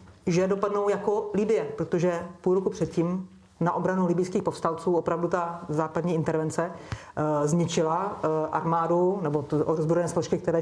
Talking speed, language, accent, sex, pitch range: 135 wpm, Czech, native, female, 155-175 Hz